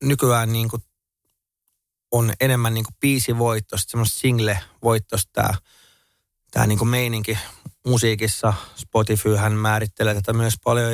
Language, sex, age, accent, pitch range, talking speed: Finnish, male, 30-49, native, 105-125 Hz, 105 wpm